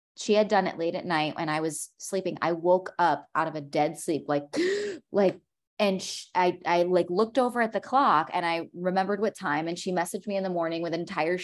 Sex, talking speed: female, 235 wpm